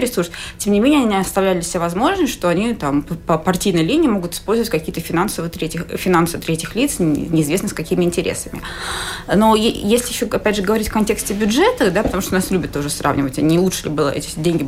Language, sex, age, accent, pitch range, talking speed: Russian, female, 20-39, native, 165-215 Hz, 200 wpm